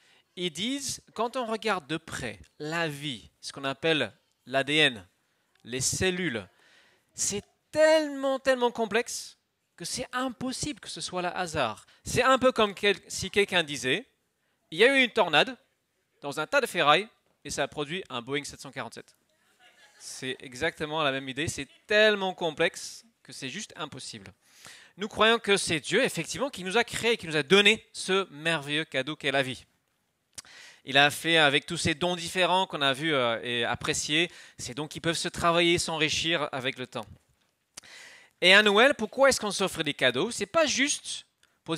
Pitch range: 140-210 Hz